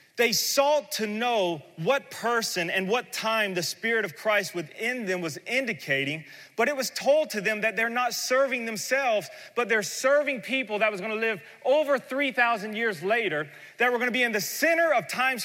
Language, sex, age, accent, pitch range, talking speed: English, male, 30-49, American, 145-235 Hz, 200 wpm